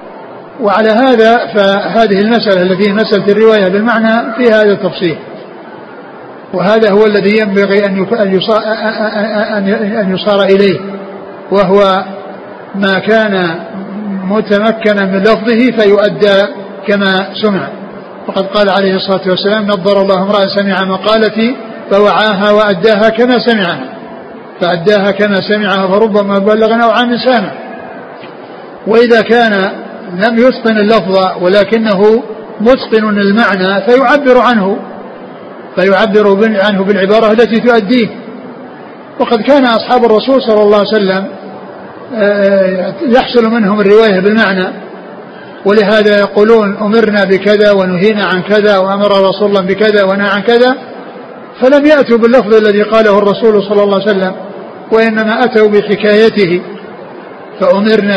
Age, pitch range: 60-79, 195-225 Hz